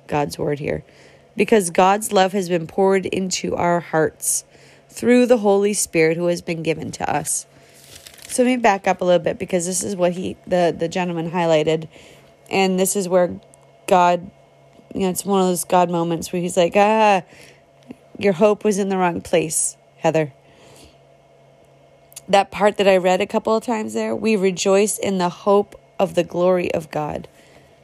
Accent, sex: American, female